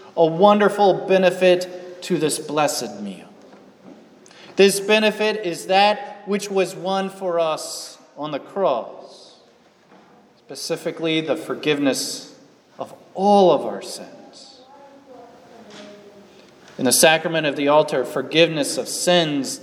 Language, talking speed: English, 110 wpm